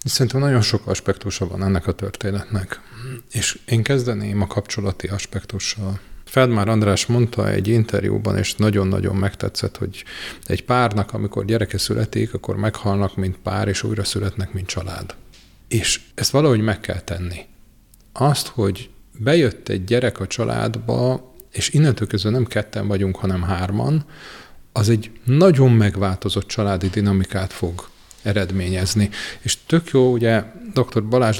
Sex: male